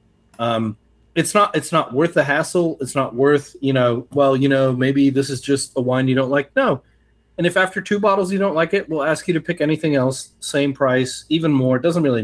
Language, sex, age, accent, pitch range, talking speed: English, male, 30-49, American, 120-155 Hz, 240 wpm